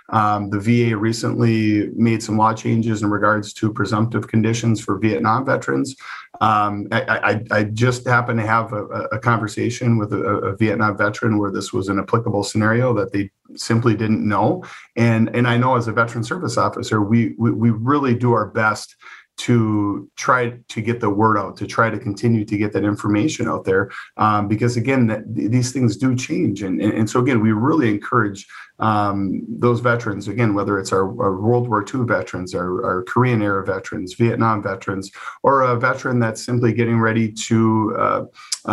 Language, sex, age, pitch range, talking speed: English, male, 40-59, 105-115 Hz, 185 wpm